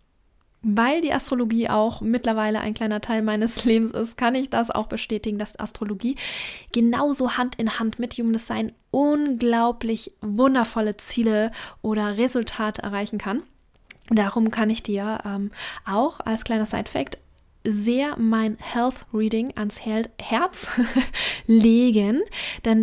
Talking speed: 130 wpm